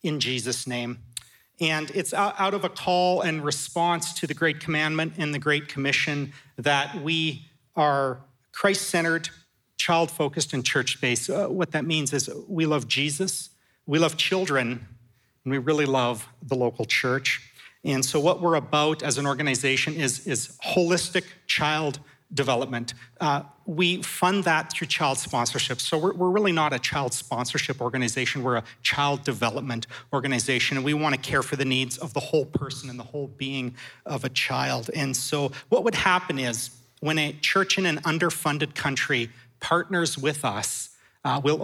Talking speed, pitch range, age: 165 wpm, 130-160 Hz, 40-59